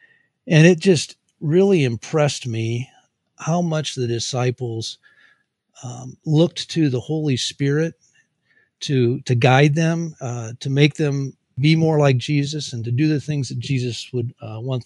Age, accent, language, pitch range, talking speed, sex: 50-69, American, English, 120-150 Hz, 155 wpm, male